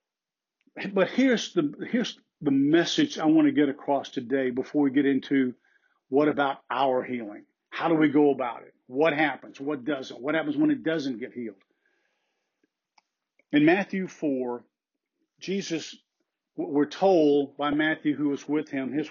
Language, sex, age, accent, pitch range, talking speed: English, male, 50-69, American, 135-215 Hz, 155 wpm